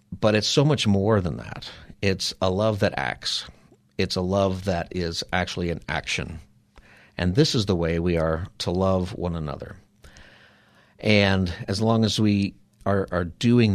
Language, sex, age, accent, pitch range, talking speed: English, male, 50-69, American, 90-110 Hz, 170 wpm